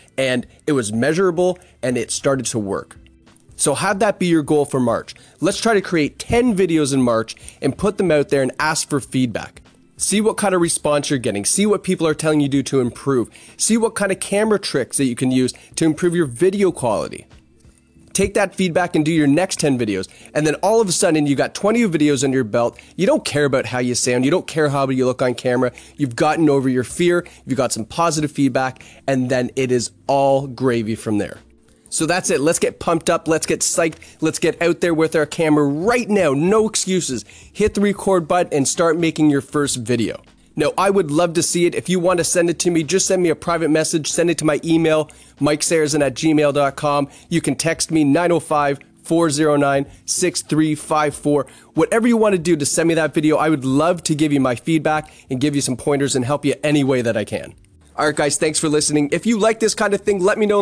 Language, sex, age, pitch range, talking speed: English, male, 30-49, 130-170 Hz, 230 wpm